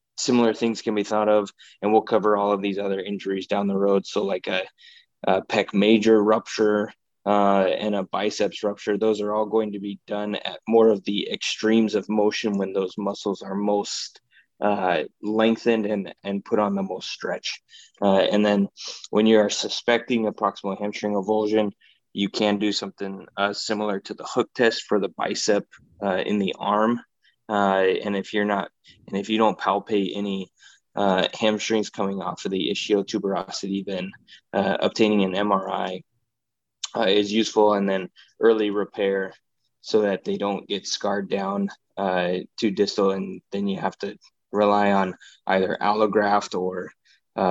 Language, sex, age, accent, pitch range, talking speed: English, male, 20-39, American, 100-110 Hz, 170 wpm